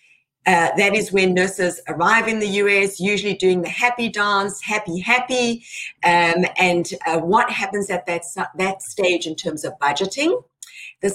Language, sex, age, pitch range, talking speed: English, female, 50-69, 175-245 Hz, 160 wpm